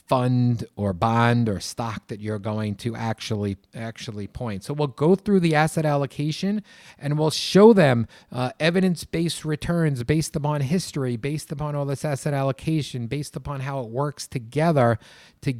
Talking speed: 160 wpm